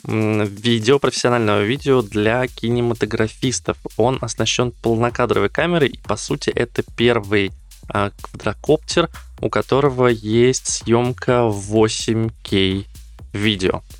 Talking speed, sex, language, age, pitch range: 95 wpm, male, Russian, 20-39, 105-125 Hz